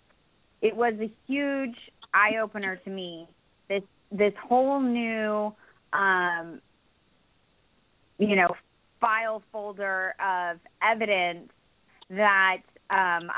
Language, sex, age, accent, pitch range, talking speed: English, female, 20-39, American, 180-215 Hz, 90 wpm